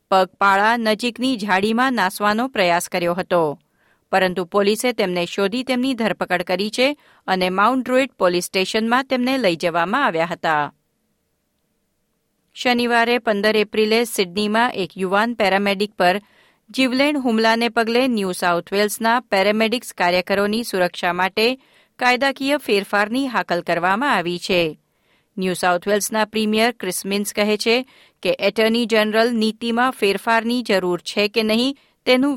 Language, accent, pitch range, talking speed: Gujarati, native, 185-245 Hz, 110 wpm